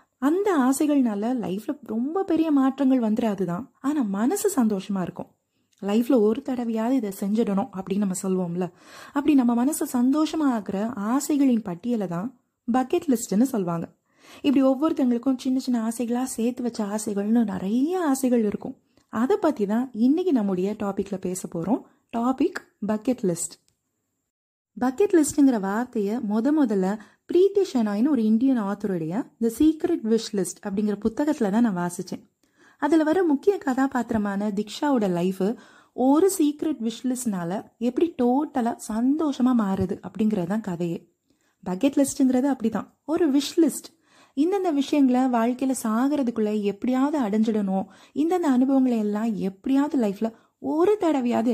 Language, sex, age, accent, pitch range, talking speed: Tamil, female, 30-49, native, 210-275 Hz, 120 wpm